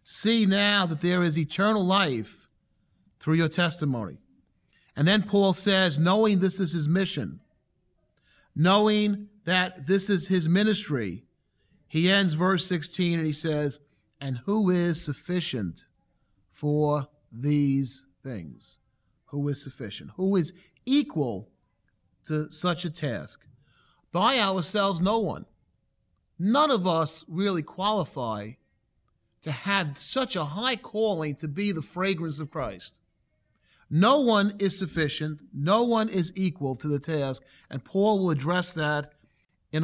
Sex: male